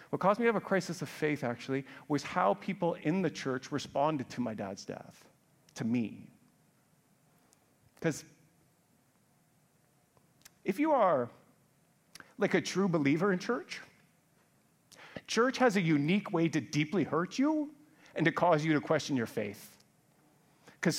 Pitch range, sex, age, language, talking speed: 145-205 Hz, male, 40-59, English, 145 wpm